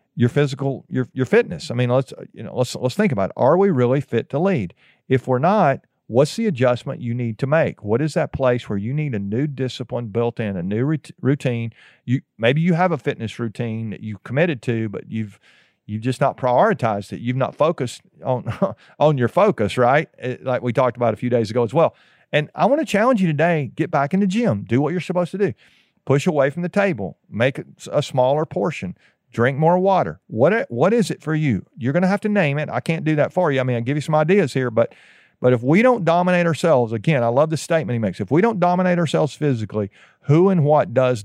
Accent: American